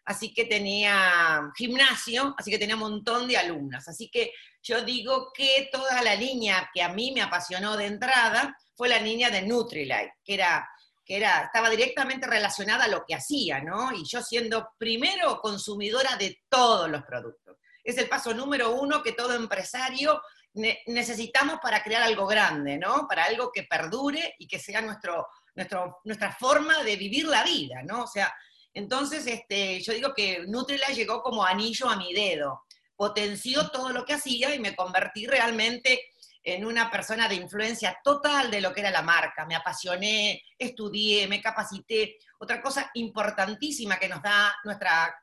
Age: 40-59